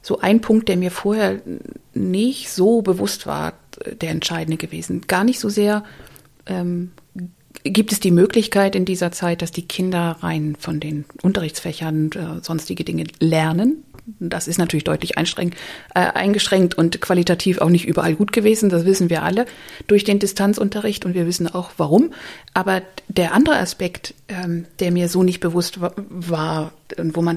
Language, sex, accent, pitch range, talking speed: German, female, German, 170-205 Hz, 165 wpm